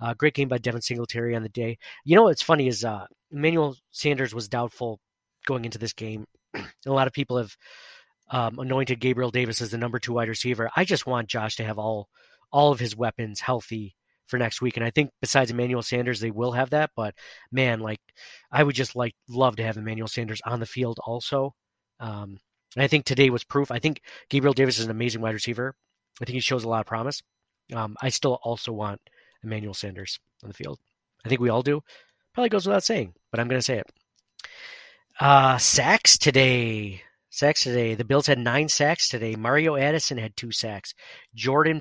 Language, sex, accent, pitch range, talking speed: English, male, American, 115-140 Hz, 210 wpm